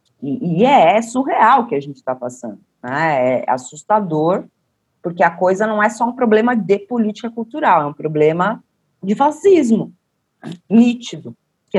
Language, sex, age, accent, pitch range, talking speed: Portuguese, female, 30-49, Brazilian, 160-235 Hz, 165 wpm